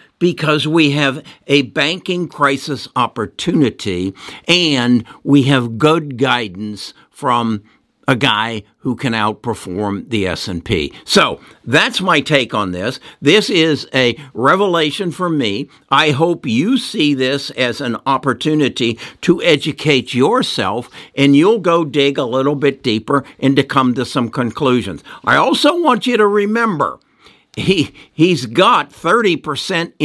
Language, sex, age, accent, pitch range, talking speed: English, male, 60-79, American, 125-165 Hz, 135 wpm